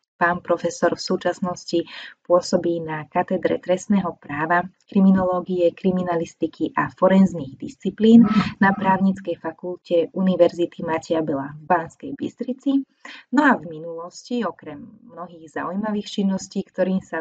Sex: female